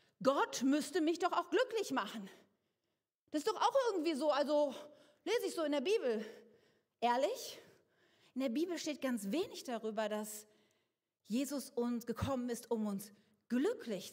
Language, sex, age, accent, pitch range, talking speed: German, female, 40-59, German, 220-325 Hz, 155 wpm